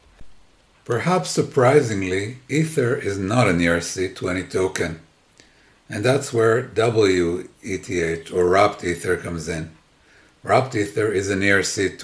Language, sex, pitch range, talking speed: English, male, 90-115 Hz, 110 wpm